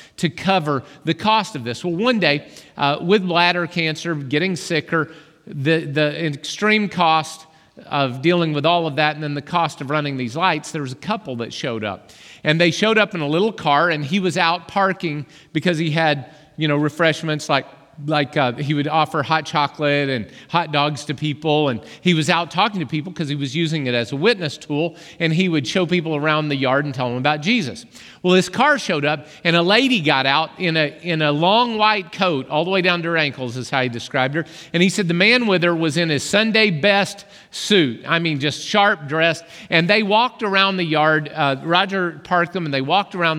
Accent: American